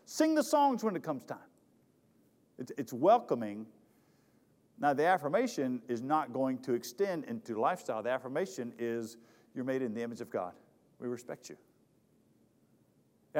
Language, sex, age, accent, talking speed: English, male, 50-69, American, 150 wpm